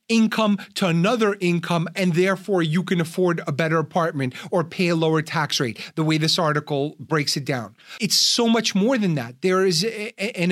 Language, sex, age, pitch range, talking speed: English, male, 40-59, 160-205 Hz, 195 wpm